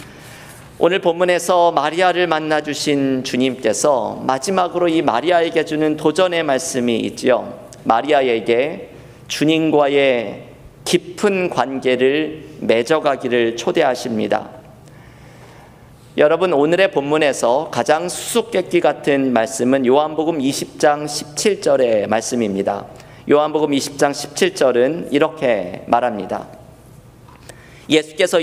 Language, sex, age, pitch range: Korean, male, 50-69, 130-170 Hz